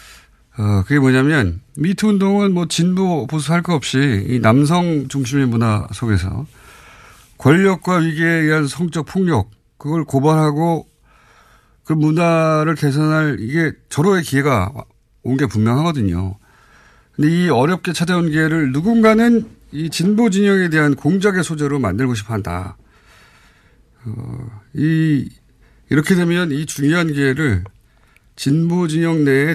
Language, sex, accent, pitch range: Korean, male, native, 120-175 Hz